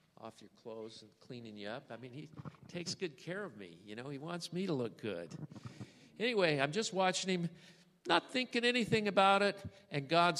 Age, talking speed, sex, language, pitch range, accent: 50-69, 200 wpm, male, English, 120-175 Hz, American